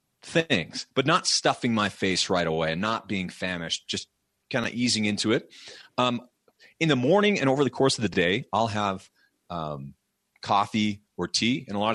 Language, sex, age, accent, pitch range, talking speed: English, male, 30-49, American, 95-135 Hz, 190 wpm